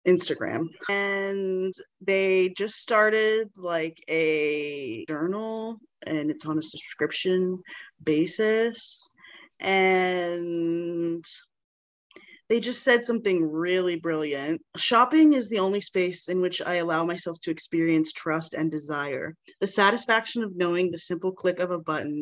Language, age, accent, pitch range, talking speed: English, 20-39, American, 165-200 Hz, 125 wpm